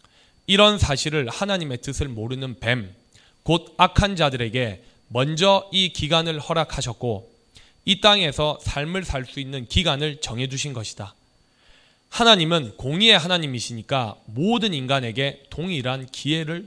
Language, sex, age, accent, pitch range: Korean, male, 20-39, native, 120-165 Hz